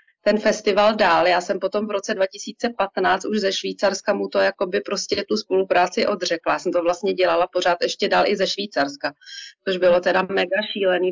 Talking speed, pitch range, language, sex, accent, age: 190 wpm, 180-195 Hz, Czech, female, native, 30-49